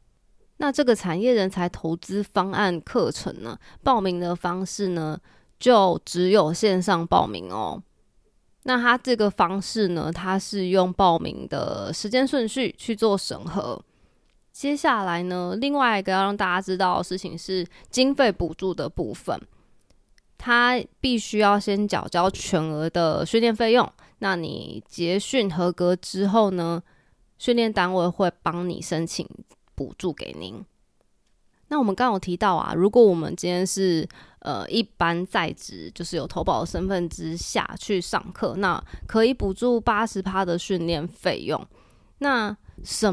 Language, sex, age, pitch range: Chinese, female, 20-39, 175-225 Hz